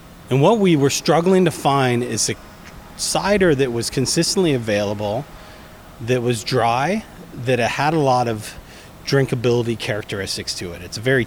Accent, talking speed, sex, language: American, 160 wpm, male, English